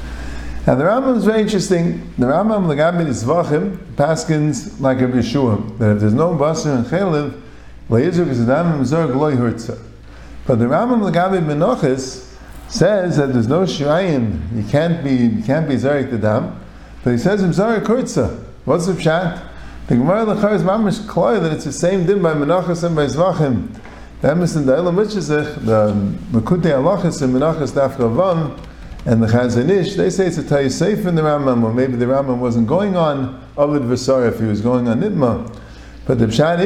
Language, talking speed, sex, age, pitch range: English, 185 wpm, male, 50-69, 125-180 Hz